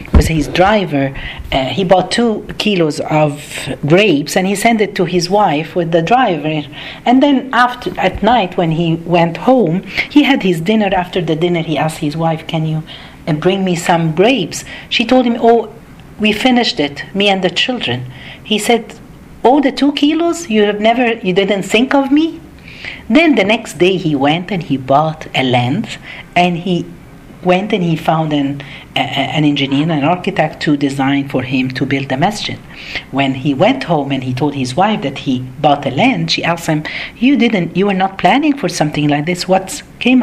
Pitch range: 150-220 Hz